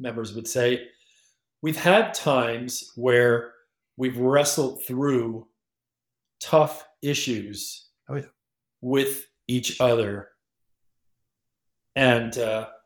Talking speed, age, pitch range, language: 75 wpm, 40-59, 120-140 Hz, English